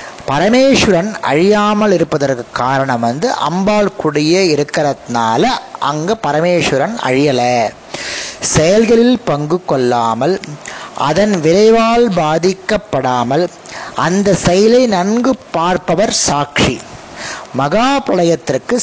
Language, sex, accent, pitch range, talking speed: Tamil, male, native, 140-205 Hz, 75 wpm